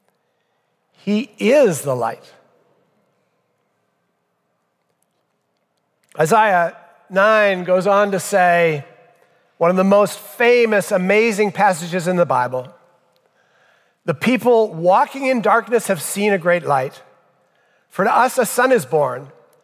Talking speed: 115 wpm